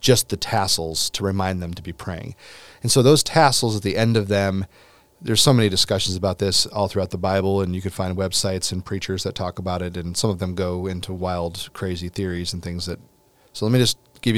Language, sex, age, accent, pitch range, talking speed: English, male, 30-49, American, 95-115 Hz, 235 wpm